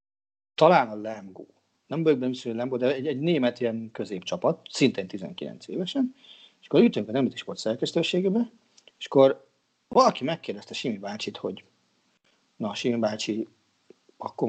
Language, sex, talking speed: Hungarian, male, 145 wpm